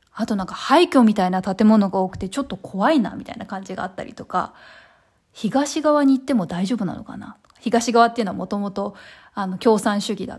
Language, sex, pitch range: Japanese, female, 195-255 Hz